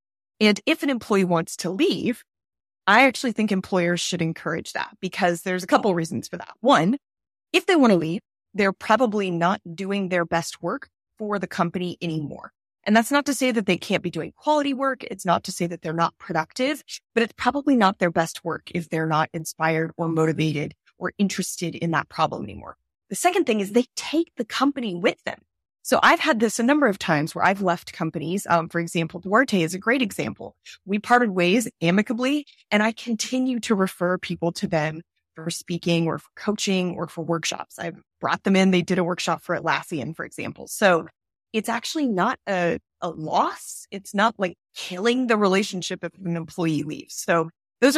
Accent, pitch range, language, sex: American, 170-230 Hz, English, female